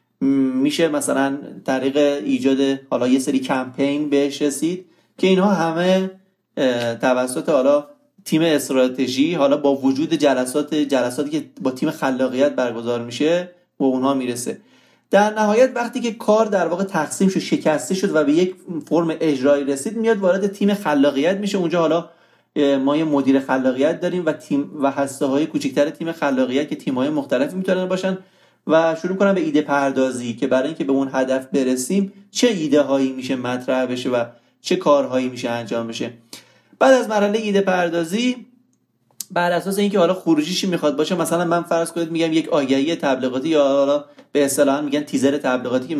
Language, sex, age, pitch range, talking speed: Persian, male, 30-49, 135-185 Hz, 165 wpm